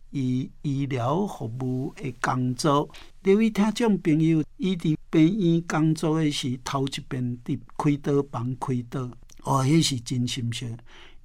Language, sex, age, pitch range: Chinese, male, 60-79, 135-170 Hz